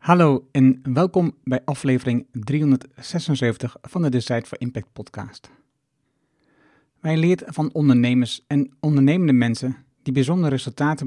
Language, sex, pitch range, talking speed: Dutch, male, 130-155 Hz, 120 wpm